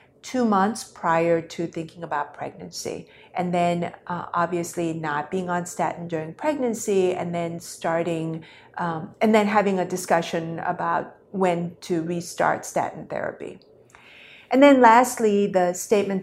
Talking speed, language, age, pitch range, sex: 135 wpm, English, 50-69, 170-195 Hz, female